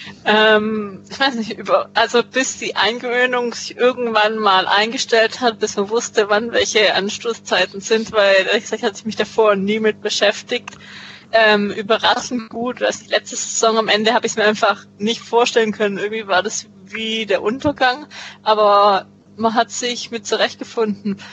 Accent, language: German, German